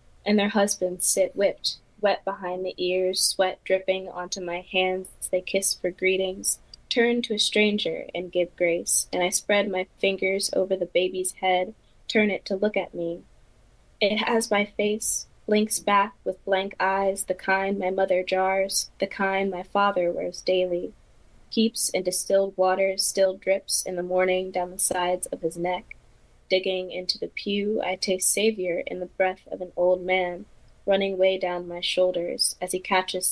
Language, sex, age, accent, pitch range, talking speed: English, female, 10-29, American, 180-195 Hz, 175 wpm